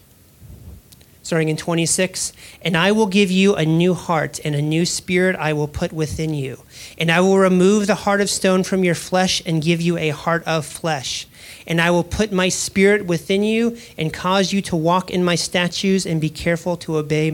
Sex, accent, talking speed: male, American, 205 wpm